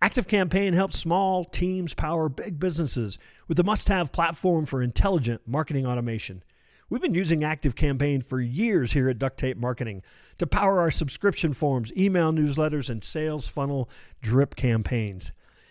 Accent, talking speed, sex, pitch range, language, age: American, 145 wpm, male, 125-185 Hz, English, 50-69